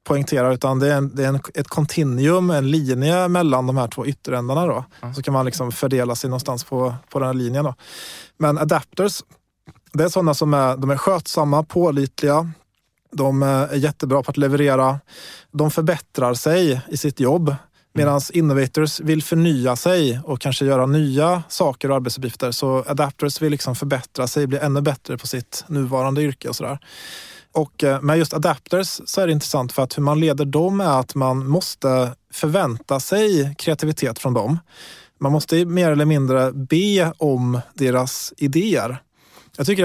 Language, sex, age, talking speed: Swedish, male, 20-39, 175 wpm